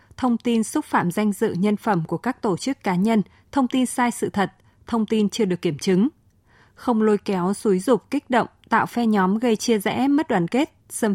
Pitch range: 185-235 Hz